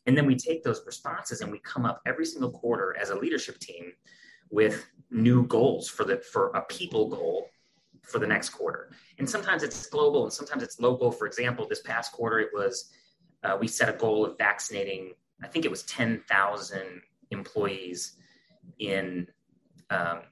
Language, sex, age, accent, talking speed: English, male, 30-49, American, 175 wpm